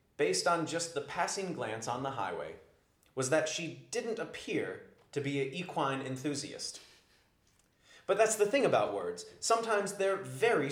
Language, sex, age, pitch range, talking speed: English, male, 30-49, 135-180 Hz, 155 wpm